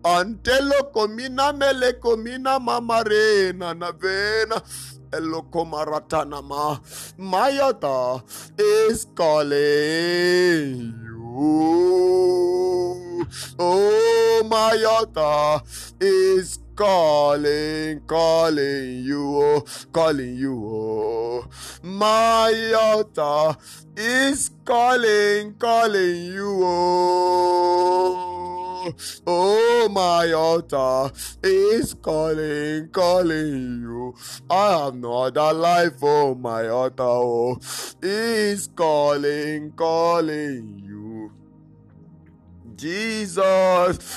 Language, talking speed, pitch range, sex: English, 65 wpm, 145-210 Hz, male